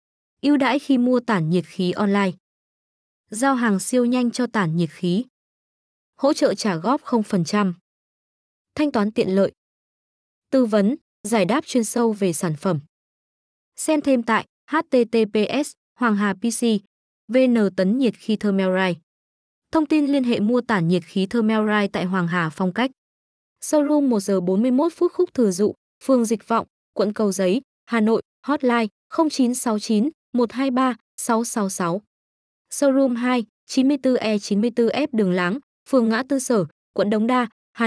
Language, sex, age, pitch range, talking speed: Vietnamese, female, 20-39, 205-260 Hz, 130 wpm